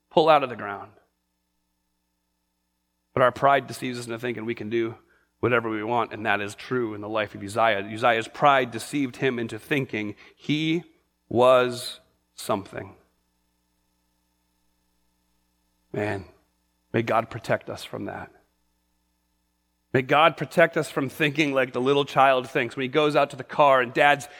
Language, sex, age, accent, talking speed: English, male, 30-49, American, 155 wpm